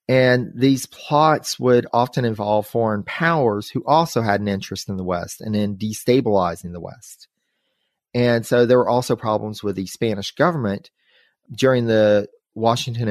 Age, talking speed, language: 30-49, 155 wpm, English